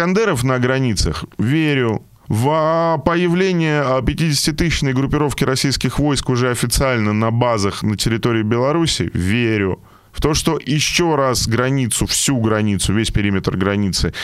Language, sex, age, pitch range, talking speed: Russian, male, 20-39, 100-145 Hz, 120 wpm